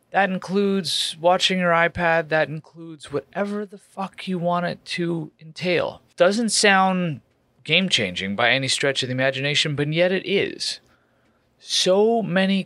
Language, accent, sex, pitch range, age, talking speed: English, American, male, 125-180 Hz, 30-49, 140 wpm